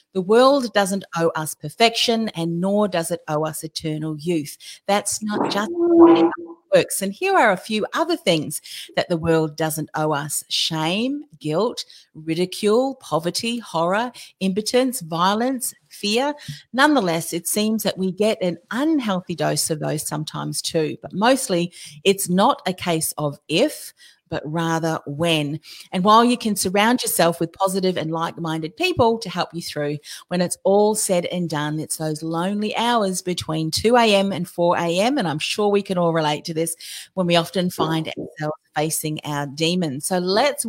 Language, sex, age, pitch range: English, female, 40-59, 160-220 Hz